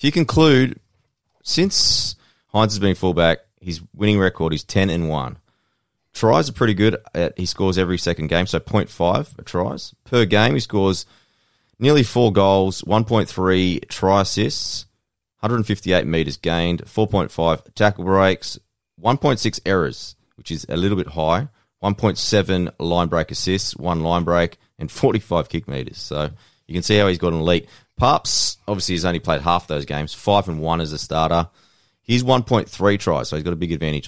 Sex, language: male, English